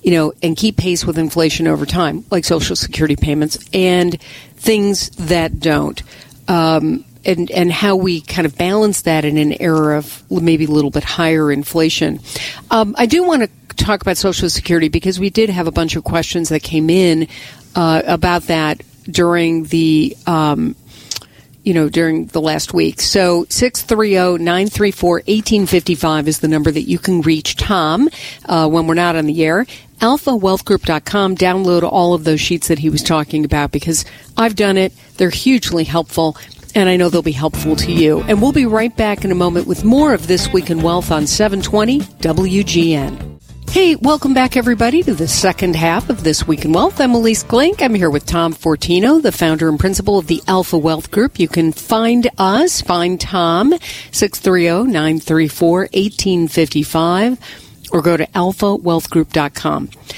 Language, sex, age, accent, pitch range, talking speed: English, female, 50-69, American, 160-200 Hz, 170 wpm